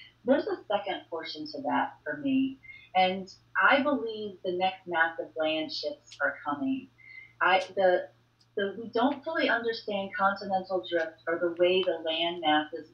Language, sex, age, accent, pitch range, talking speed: English, female, 30-49, American, 180-260 Hz, 155 wpm